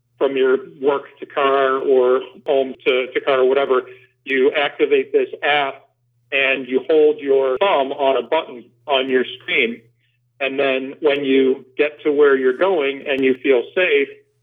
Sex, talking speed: male, 165 wpm